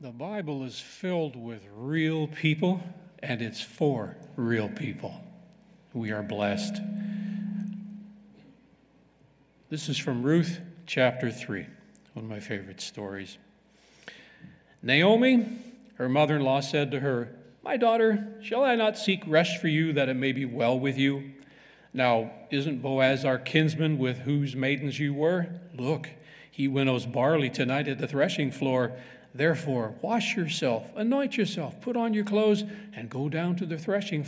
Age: 50-69